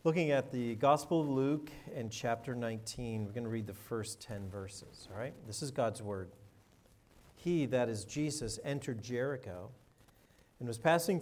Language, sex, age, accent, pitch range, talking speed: English, male, 50-69, American, 115-150 Hz, 170 wpm